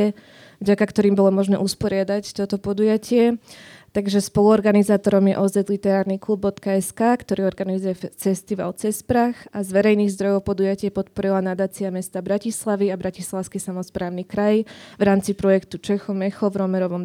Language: Slovak